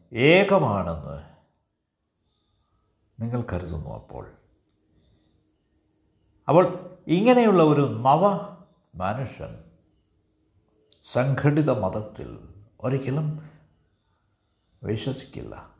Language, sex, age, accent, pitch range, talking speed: Malayalam, male, 60-79, native, 90-145 Hz, 50 wpm